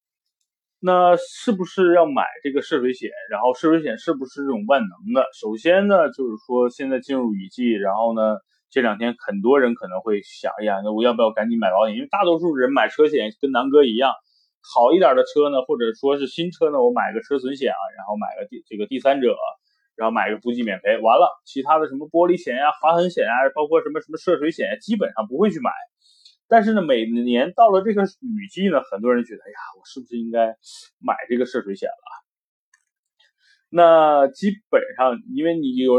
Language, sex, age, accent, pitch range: Chinese, male, 20-39, native, 125-200 Hz